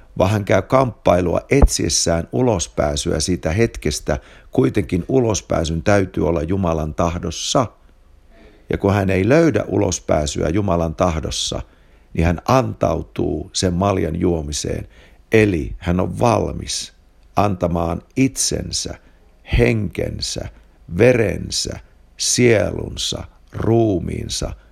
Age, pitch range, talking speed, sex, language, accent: 50-69, 80-100 Hz, 90 wpm, male, Finnish, native